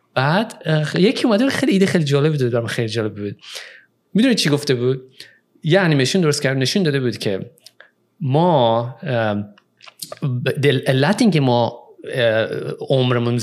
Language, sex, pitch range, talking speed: English, male, 125-165 Hz, 130 wpm